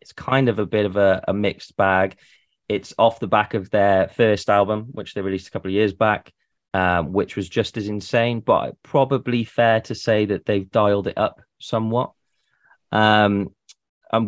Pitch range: 95-105 Hz